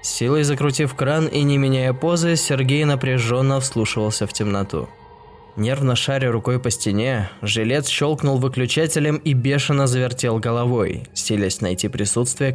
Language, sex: Russian, male